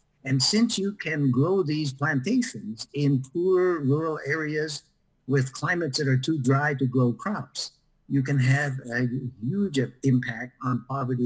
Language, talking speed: English, 150 wpm